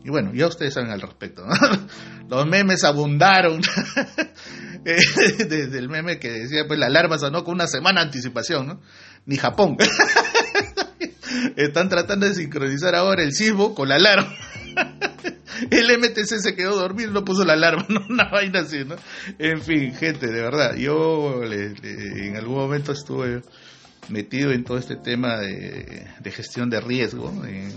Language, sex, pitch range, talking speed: Spanish, male, 115-165 Hz, 160 wpm